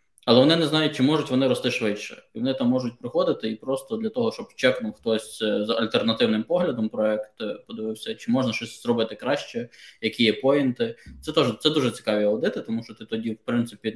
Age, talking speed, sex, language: 20-39, 200 wpm, male, Ukrainian